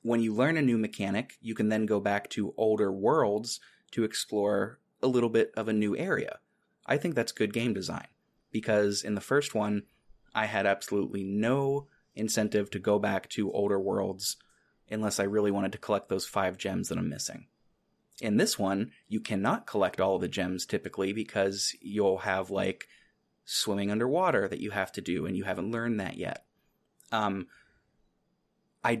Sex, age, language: male, 30-49, English